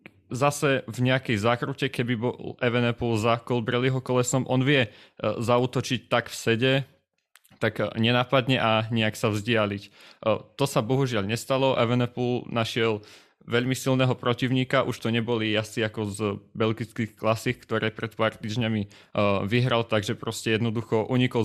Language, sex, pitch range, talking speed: Slovak, male, 110-125 Hz, 135 wpm